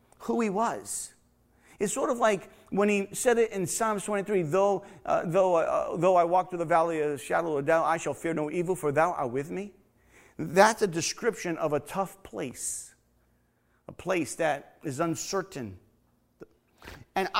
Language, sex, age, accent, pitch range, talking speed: English, male, 30-49, American, 140-205 Hz, 185 wpm